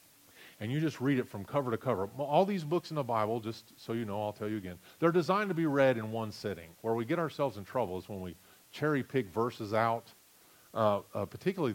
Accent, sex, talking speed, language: American, male, 235 wpm, English